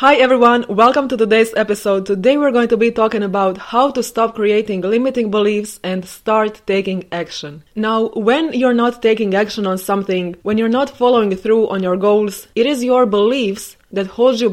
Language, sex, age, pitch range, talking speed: English, female, 20-39, 195-235 Hz, 190 wpm